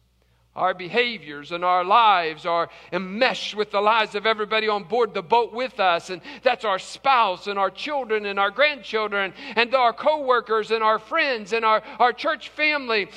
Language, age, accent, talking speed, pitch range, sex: English, 50-69, American, 180 wpm, 160-265 Hz, male